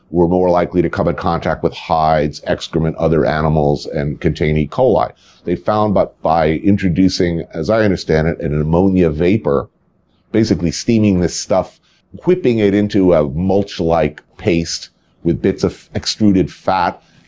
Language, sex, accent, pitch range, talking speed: English, male, American, 80-105 Hz, 150 wpm